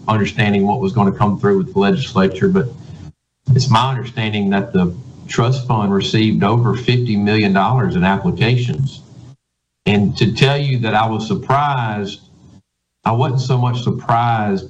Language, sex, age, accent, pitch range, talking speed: English, male, 50-69, American, 105-130 Hz, 150 wpm